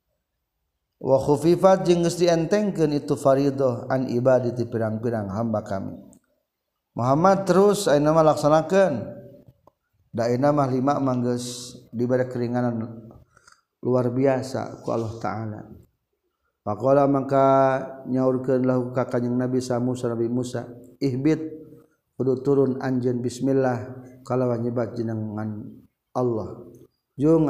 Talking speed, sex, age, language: 105 wpm, male, 50-69, Indonesian